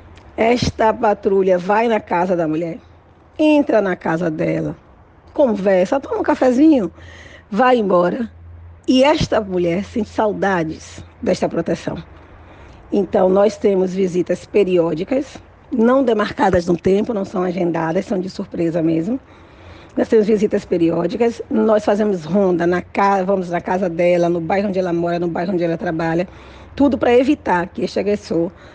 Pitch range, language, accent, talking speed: 175-230 Hz, Portuguese, Brazilian, 140 wpm